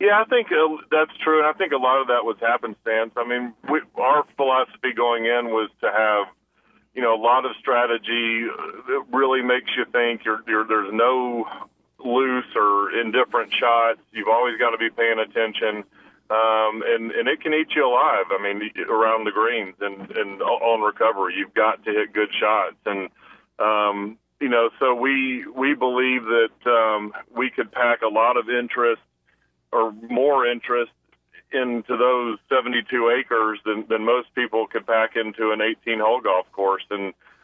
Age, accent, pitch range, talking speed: 40-59, American, 110-125 Hz, 170 wpm